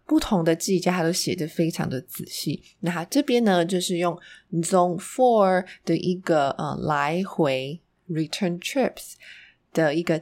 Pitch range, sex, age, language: 160-195 Hz, female, 20-39, Chinese